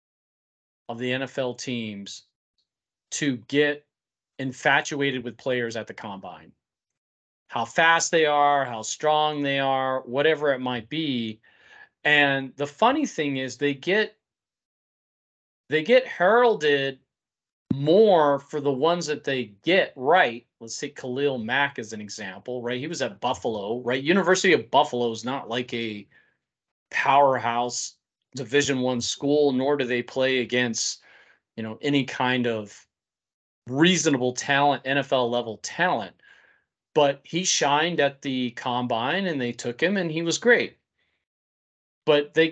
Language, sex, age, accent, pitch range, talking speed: English, male, 40-59, American, 120-155 Hz, 135 wpm